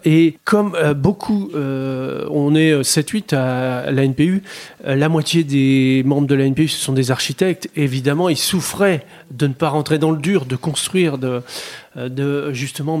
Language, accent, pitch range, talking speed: French, French, 130-160 Hz, 155 wpm